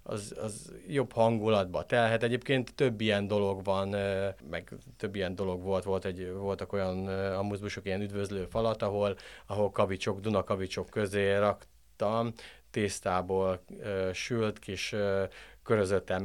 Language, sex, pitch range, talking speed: Hungarian, male, 100-125 Hz, 120 wpm